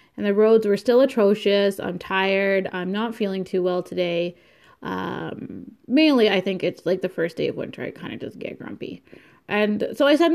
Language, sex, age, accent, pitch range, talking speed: English, female, 20-39, American, 190-235 Hz, 205 wpm